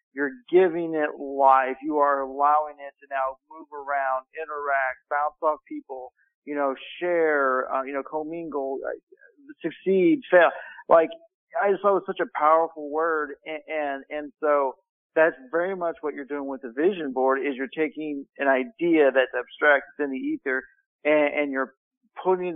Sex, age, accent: male, 50-69, American